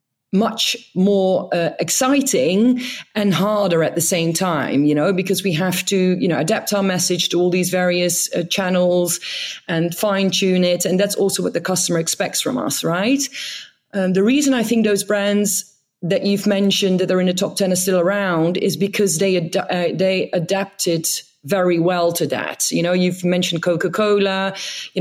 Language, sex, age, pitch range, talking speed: English, female, 30-49, 170-200 Hz, 180 wpm